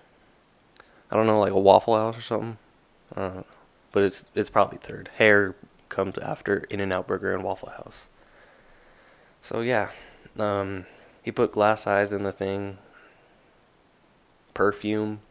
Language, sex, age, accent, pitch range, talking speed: English, male, 20-39, American, 100-110 Hz, 135 wpm